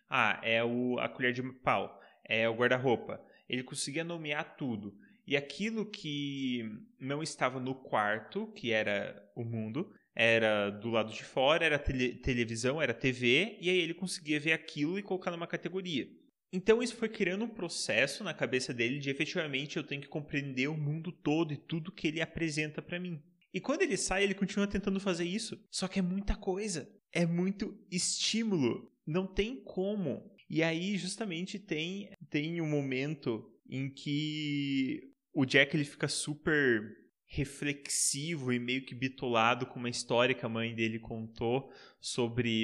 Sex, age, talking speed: male, 20-39, 165 wpm